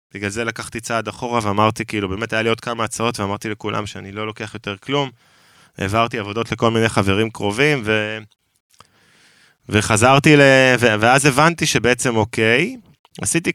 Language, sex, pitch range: Hebrew, male, 105-135 Hz